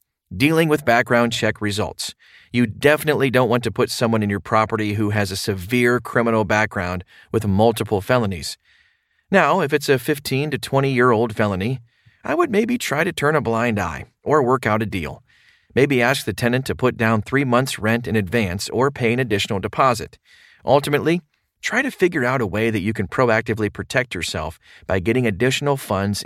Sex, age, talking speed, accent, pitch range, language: male, 30-49, 185 wpm, American, 105-135 Hz, English